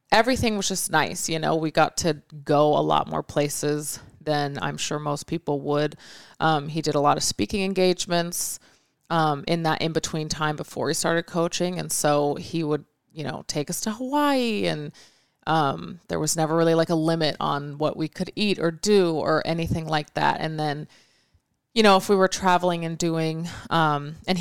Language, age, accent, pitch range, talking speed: English, 30-49, American, 150-170 Hz, 195 wpm